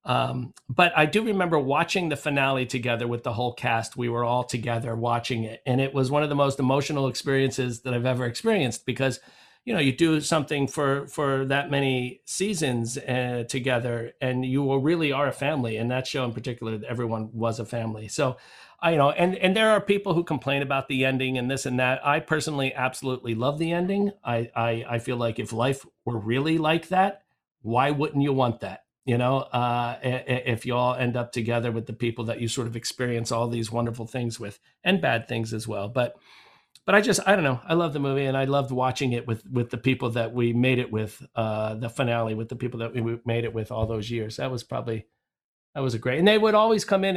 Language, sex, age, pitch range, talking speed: English, male, 50-69, 120-145 Hz, 230 wpm